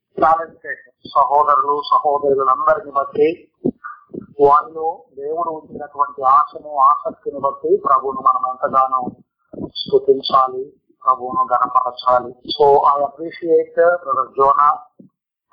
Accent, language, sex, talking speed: native, Telugu, male, 95 wpm